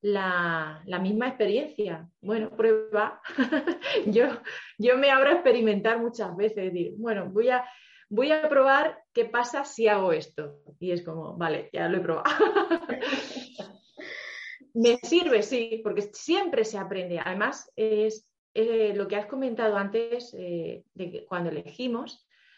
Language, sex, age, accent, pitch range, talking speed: Spanish, female, 30-49, Spanish, 185-245 Hz, 145 wpm